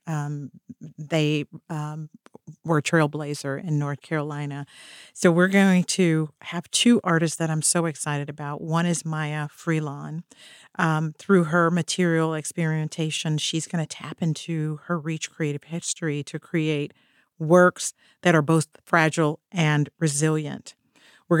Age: 50-69